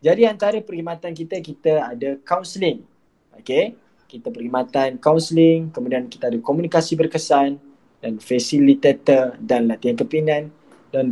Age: 20-39